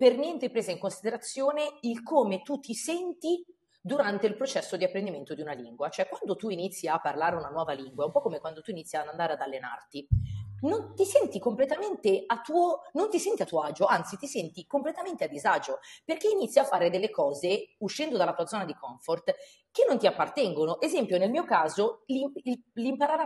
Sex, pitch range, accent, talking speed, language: female, 170-280 Hz, native, 185 wpm, Italian